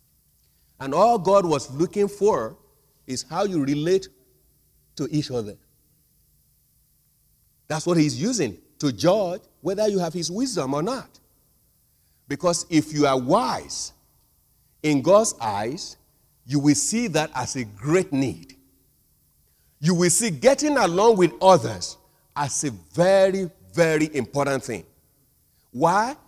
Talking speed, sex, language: 130 wpm, male, English